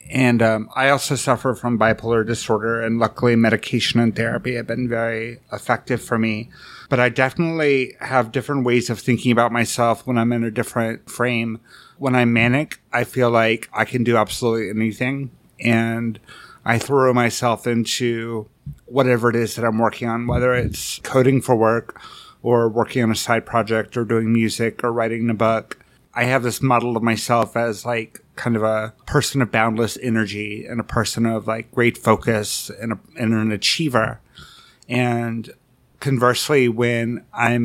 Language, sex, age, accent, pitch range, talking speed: English, male, 30-49, American, 115-125 Hz, 170 wpm